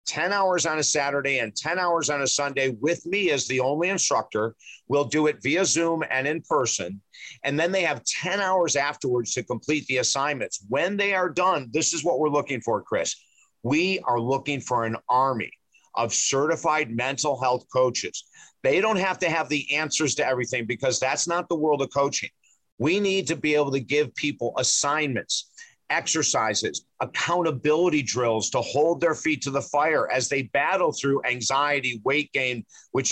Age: 50-69